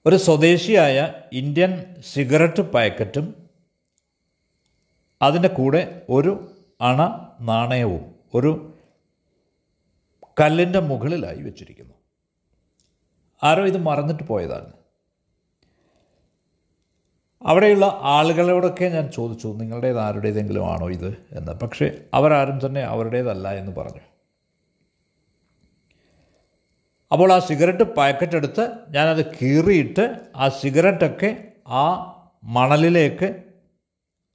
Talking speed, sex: 75 wpm, male